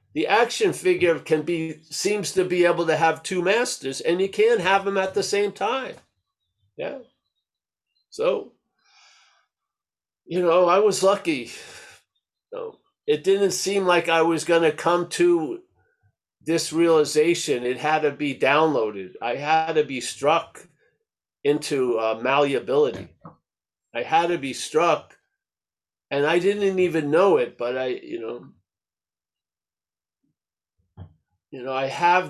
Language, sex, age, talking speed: English, male, 50-69, 135 wpm